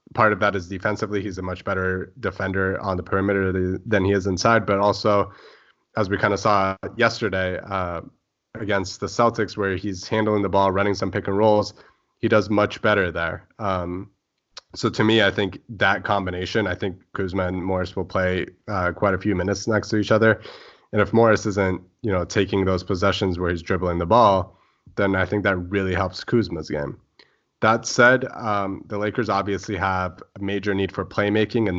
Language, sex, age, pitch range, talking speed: English, male, 20-39, 95-110 Hz, 195 wpm